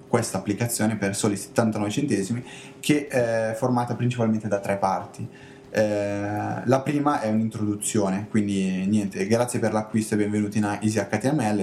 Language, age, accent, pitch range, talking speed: Italian, 20-39, native, 105-135 Hz, 145 wpm